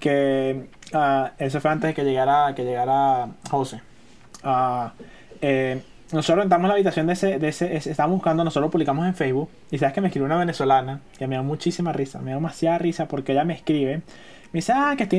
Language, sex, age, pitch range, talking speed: Spanish, male, 20-39, 155-230 Hz, 215 wpm